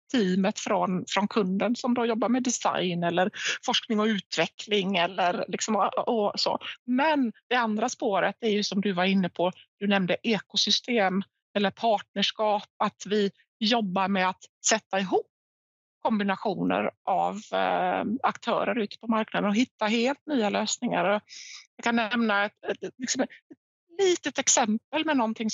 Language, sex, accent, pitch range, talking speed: Swedish, female, native, 200-235 Hz, 140 wpm